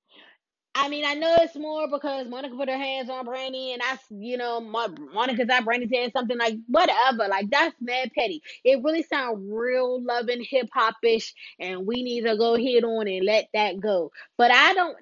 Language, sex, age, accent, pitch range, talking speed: English, female, 20-39, American, 225-300 Hz, 195 wpm